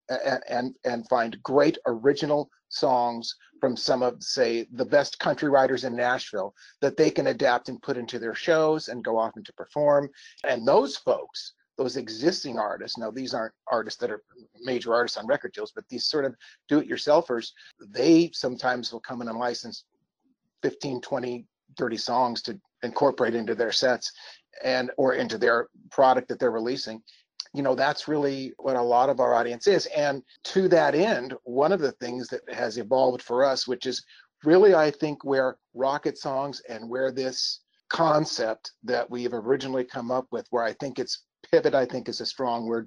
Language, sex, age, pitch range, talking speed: English, male, 40-59, 120-150 Hz, 180 wpm